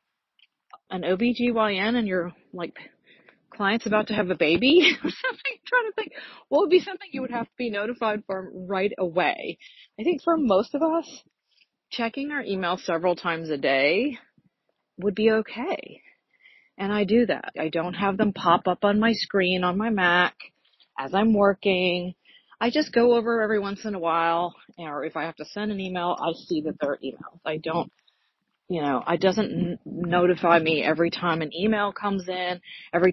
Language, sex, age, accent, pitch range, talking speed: English, female, 30-49, American, 175-230 Hz, 185 wpm